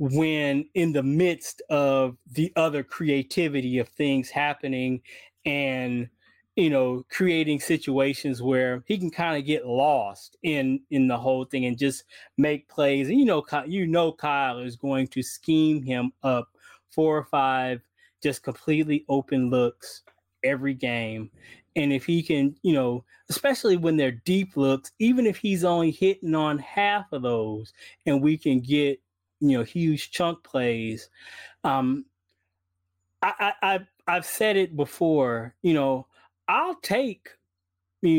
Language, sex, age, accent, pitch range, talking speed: English, male, 20-39, American, 125-160 Hz, 145 wpm